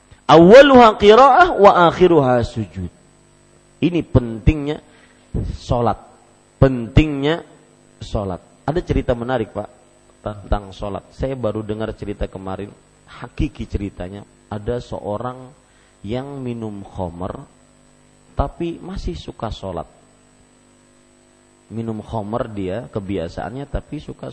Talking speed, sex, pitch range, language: 90 wpm, male, 105-145 Hz, Malay